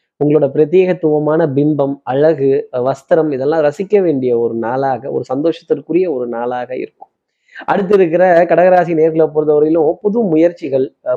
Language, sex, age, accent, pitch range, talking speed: Tamil, male, 20-39, native, 140-185 Hz, 120 wpm